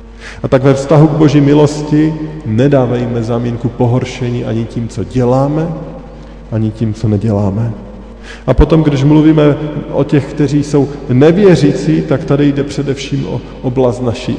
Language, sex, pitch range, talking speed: Slovak, male, 110-145 Hz, 140 wpm